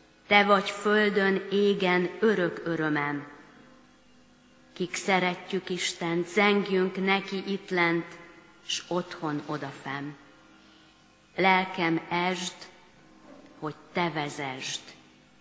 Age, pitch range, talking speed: 40-59, 160-200 Hz, 80 wpm